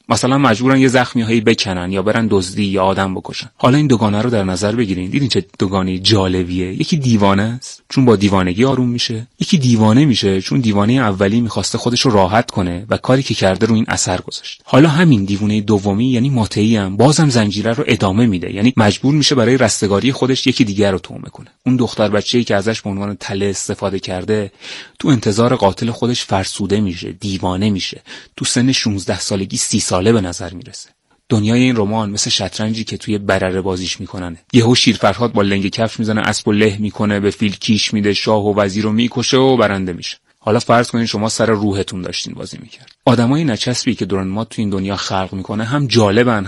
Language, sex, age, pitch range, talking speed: Persian, male, 30-49, 100-120 Hz, 200 wpm